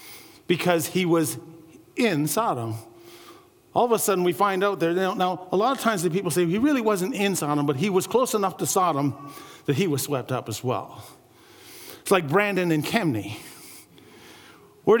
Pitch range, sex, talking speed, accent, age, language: 155-250 Hz, male, 185 wpm, American, 50-69, English